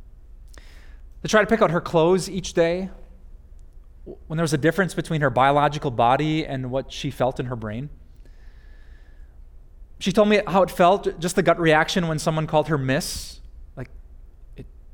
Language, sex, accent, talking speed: English, male, American, 170 wpm